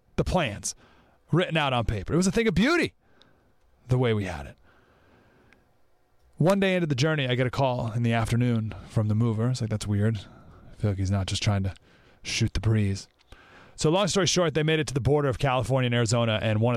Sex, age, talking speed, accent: male, 30-49, 225 wpm, American